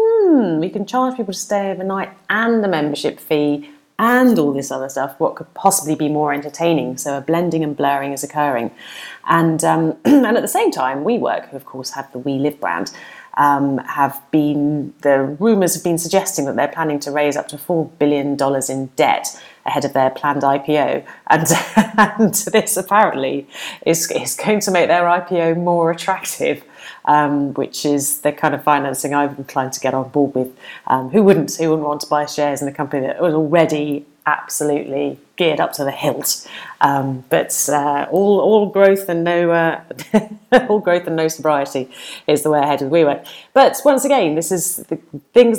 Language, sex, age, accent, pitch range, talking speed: English, female, 30-49, British, 145-185 Hz, 190 wpm